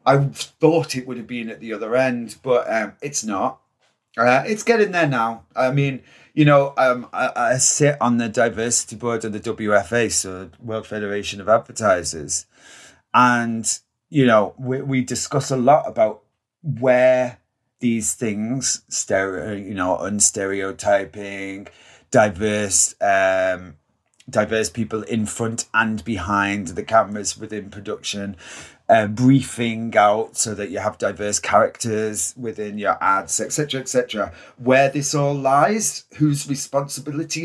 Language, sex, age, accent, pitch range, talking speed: English, male, 30-49, British, 105-135 Hz, 145 wpm